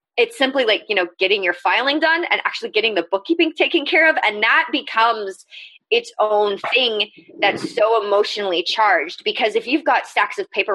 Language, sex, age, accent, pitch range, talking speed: English, female, 20-39, American, 195-320 Hz, 190 wpm